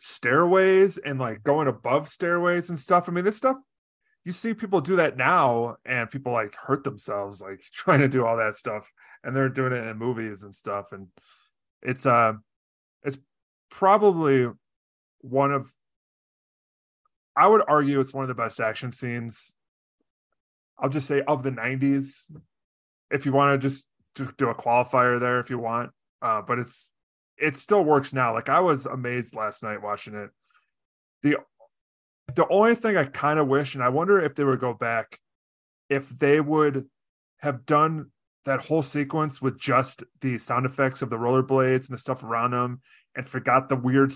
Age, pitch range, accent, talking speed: 20-39, 115-145 Hz, American, 175 wpm